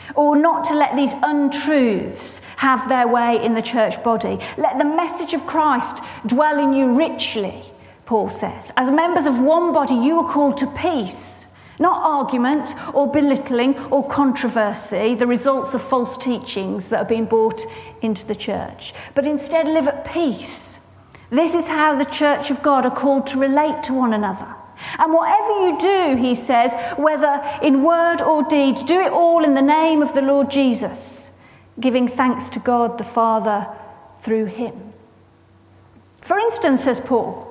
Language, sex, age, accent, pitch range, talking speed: English, female, 40-59, British, 240-320 Hz, 165 wpm